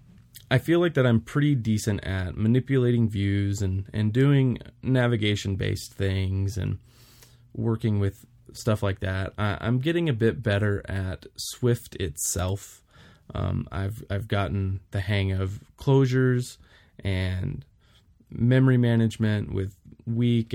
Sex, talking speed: male, 125 wpm